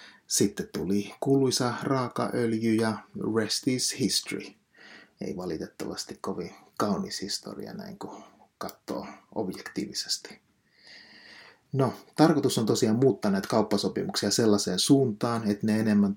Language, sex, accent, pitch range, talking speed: Finnish, male, native, 100-120 Hz, 110 wpm